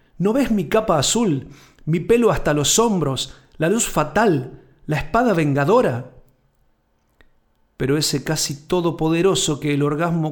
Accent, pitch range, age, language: Argentinian, 145-180 Hz, 50-69, Spanish